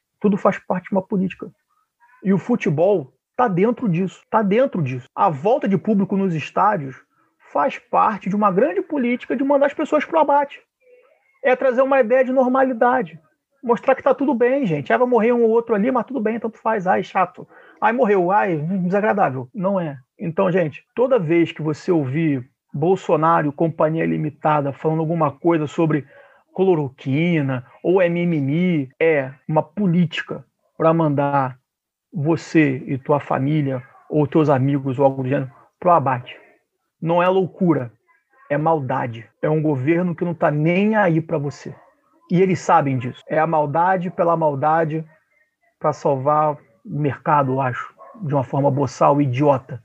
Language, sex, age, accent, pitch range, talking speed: Portuguese, male, 40-59, Brazilian, 150-220 Hz, 165 wpm